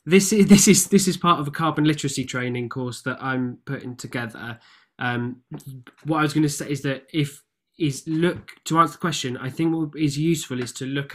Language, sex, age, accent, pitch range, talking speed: English, male, 20-39, British, 125-150 Hz, 220 wpm